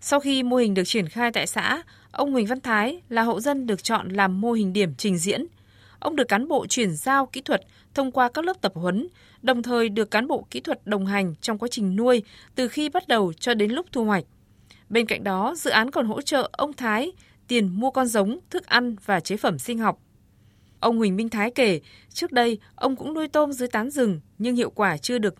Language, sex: Vietnamese, female